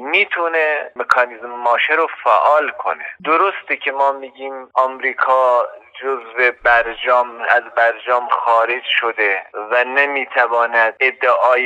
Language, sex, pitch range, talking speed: Persian, male, 125-165 Hz, 105 wpm